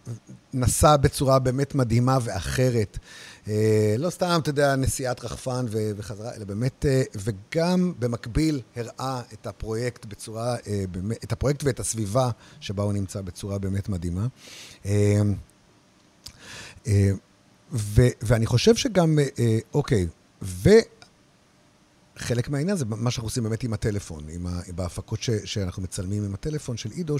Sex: male